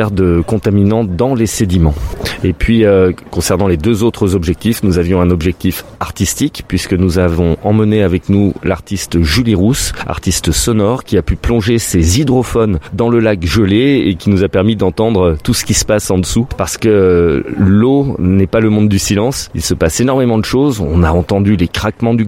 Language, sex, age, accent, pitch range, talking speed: French, male, 30-49, French, 95-115 Hz, 195 wpm